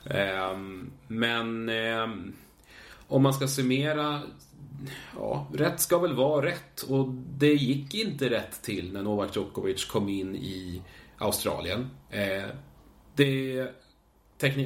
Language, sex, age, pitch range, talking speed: Swedish, male, 30-49, 100-135 Hz, 95 wpm